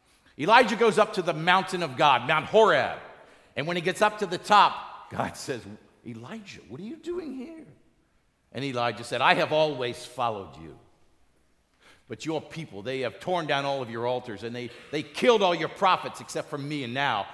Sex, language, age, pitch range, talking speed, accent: male, English, 50-69, 120-180 Hz, 195 wpm, American